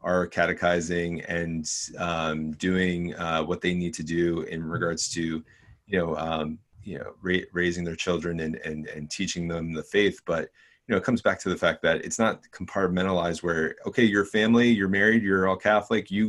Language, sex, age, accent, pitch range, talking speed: English, male, 30-49, American, 85-100 Hz, 195 wpm